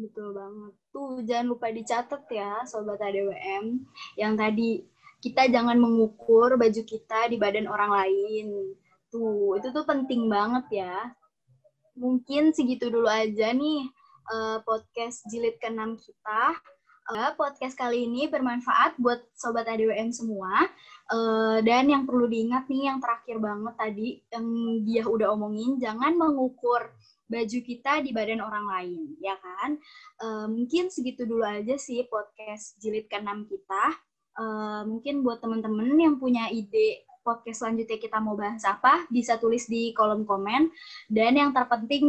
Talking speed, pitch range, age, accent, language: 140 wpm, 220-260 Hz, 20-39, native, Indonesian